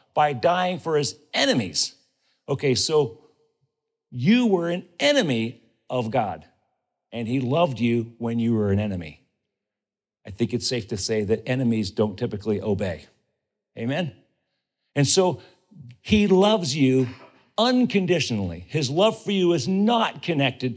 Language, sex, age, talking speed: English, male, 50-69, 135 wpm